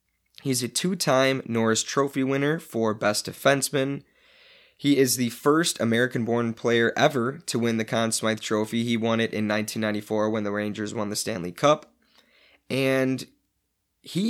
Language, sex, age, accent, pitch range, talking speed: English, male, 20-39, American, 110-130 Hz, 150 wpm